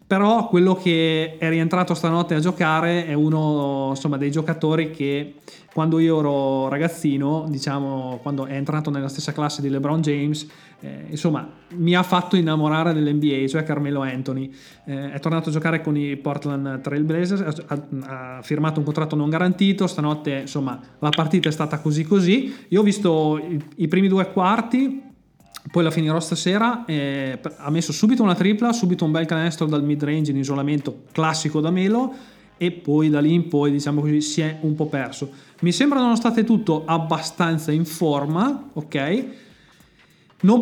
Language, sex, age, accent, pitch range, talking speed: Italian, male, 20-39, native, 145-175 Hz, 170 wpm